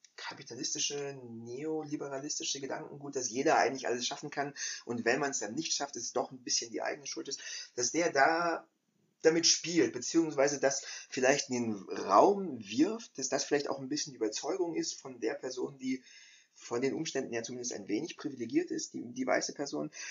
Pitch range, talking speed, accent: 120-160 Hz, 190 wpm, German